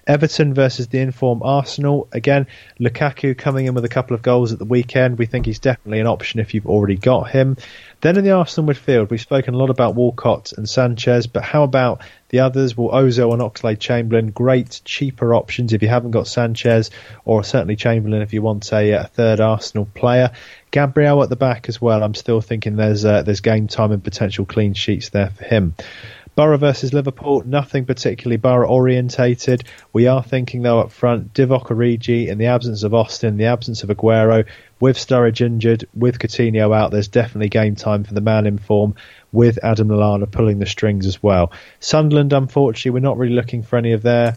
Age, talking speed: 30-49, 200 wpm